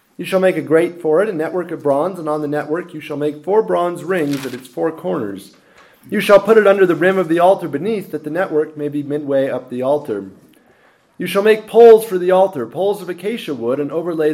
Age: 30-49